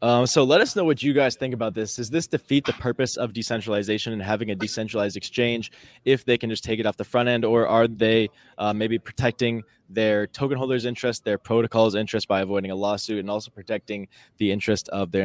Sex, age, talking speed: male, 20-39, 225 wpm